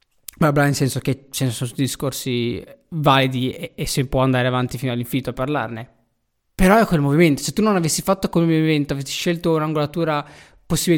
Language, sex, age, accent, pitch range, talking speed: Italian, male, 20-39, native, 135-170 Hz, 185 wpm